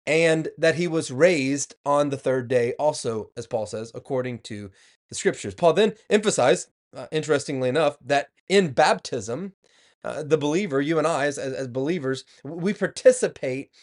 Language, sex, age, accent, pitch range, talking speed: English, male, 30-49, American, 130-185 Hz, 160 wpm